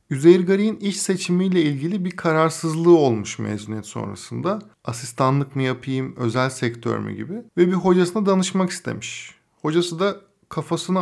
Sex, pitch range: male, 120-170 Hz